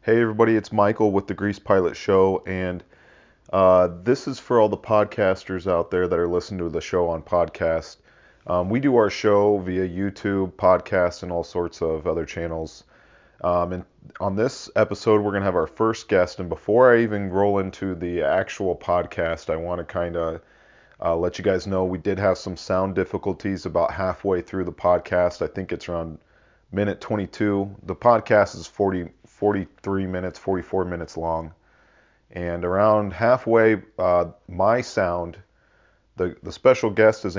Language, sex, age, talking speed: English, male, 30-49, 175 wpm